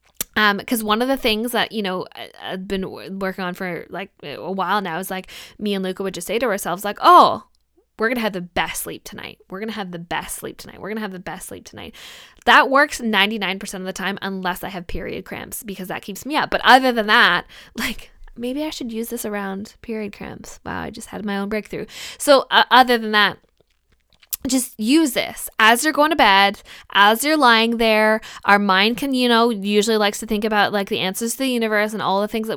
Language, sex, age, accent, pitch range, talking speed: English, female, 10-29, American, 195-235 Hz, 235 wpm